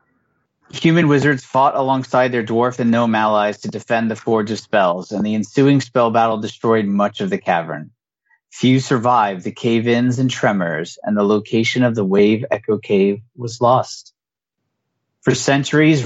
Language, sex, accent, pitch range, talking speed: English, male, American, 110-135 Hz, 160 wpm